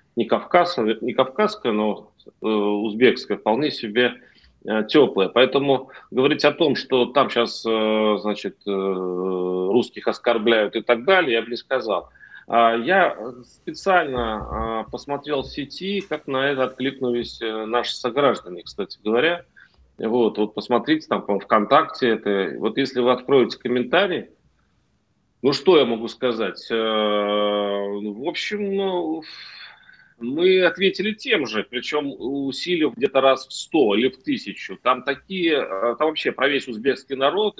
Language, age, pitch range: Russian, 30-49, 110-150 Hz